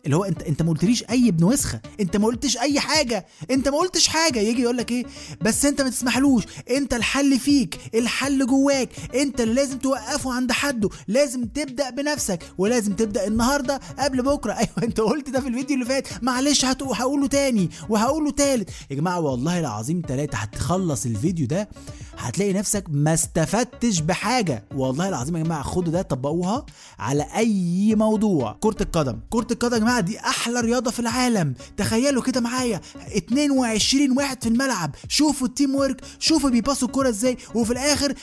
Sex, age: male, 20-39